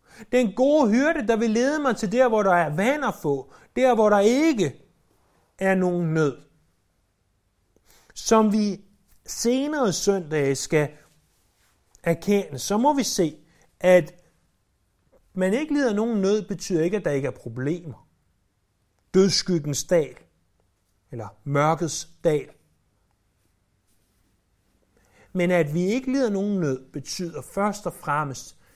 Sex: male